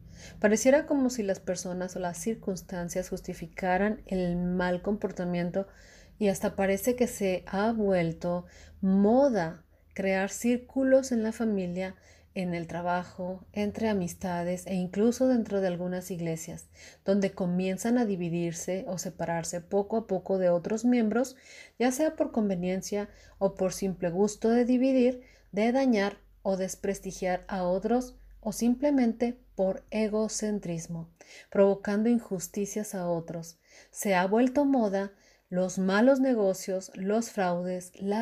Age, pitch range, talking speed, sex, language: 30-49, 180-220 Hz, 130 wpm, female, Spanish